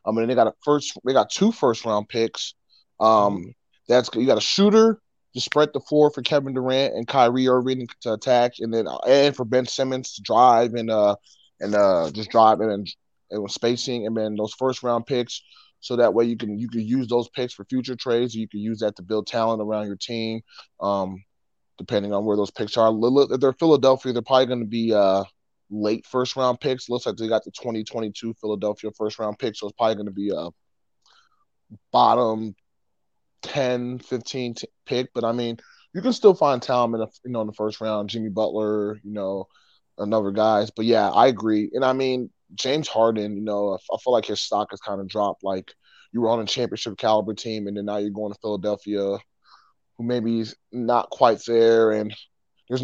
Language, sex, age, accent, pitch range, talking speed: English, male, 20-39, American, 105-125 Hz, 210 wpm